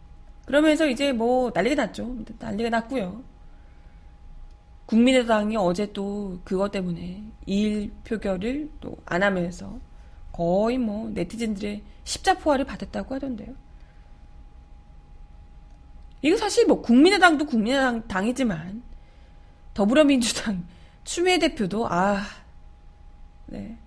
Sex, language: female, Korean